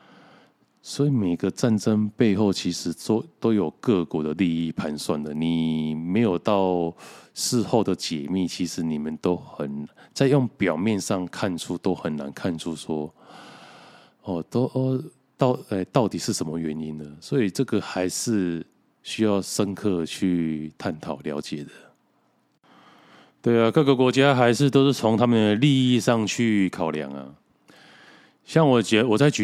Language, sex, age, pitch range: Chinese, male, 20-39, 80-115 Hz